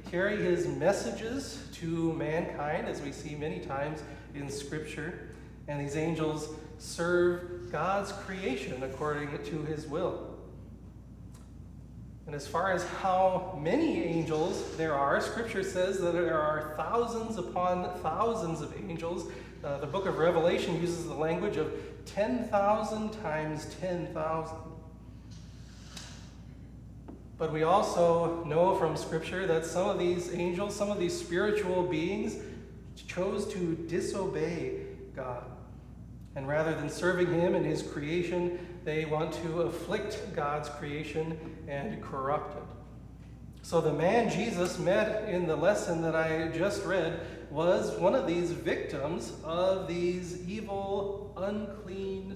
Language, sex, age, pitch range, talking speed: English, male, 40-59, 155-185 Hz, 125 wpm